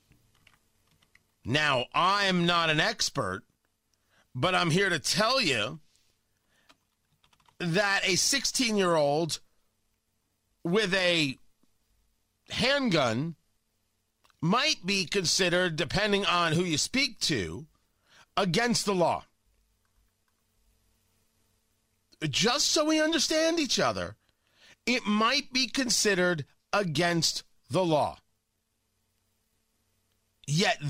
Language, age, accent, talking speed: English, 40-59, American, 85 wpm